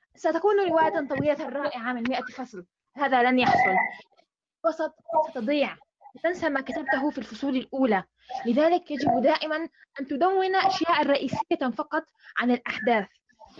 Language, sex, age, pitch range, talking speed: Arabic, female, 20-39, 245-315 Hz, 125 wpm